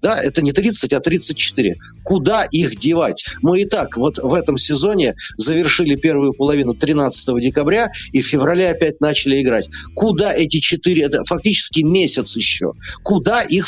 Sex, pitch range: male, 135-175 Hz